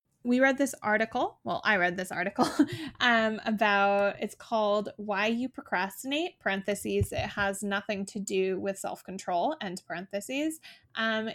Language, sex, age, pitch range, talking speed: English, female, 20-39, 195-230 Hz, 145 wpm